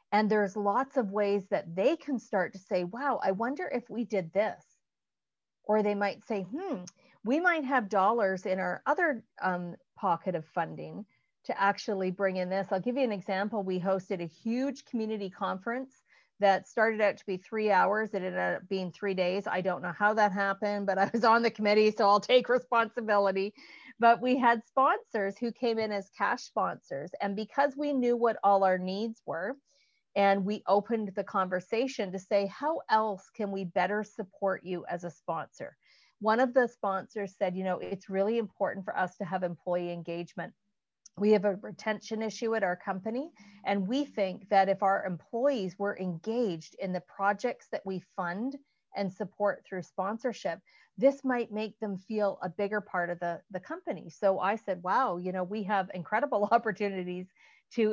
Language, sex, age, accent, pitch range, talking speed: English, female, 40-59, American, 190-235 Hz, 185 wpm